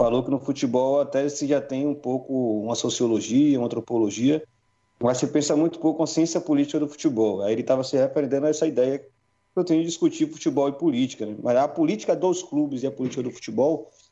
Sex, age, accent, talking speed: male, 40-59, Brazilian, 215 wpm